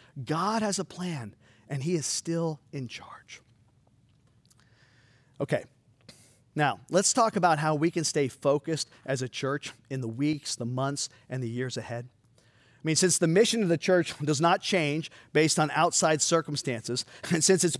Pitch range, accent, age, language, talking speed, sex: 125-180 Hz, American, 40-59, English, 170 wpm, male